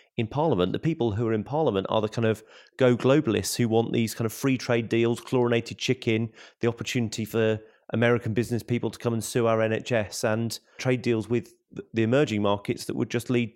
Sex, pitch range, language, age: male, 105-120 Hz, English, 30-49